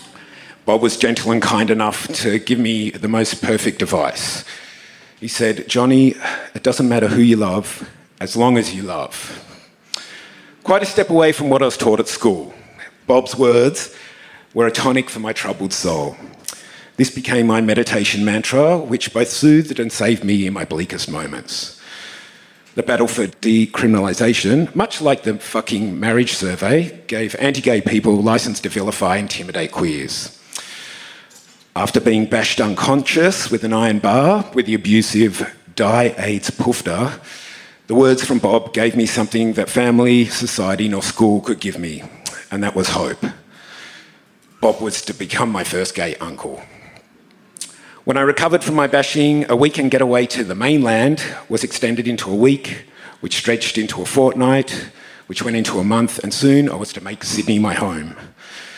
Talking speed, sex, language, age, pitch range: 160 wpm, male, English, 50-69, 105-130 Hz